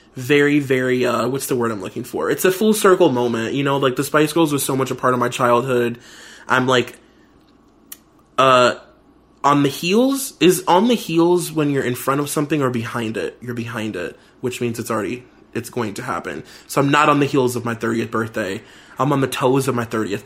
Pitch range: 120-150 Hz